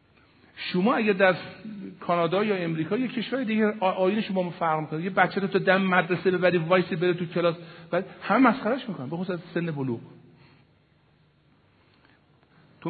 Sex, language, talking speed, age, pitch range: male, Persian, 145 wpm, 50-69, 130-195 Hz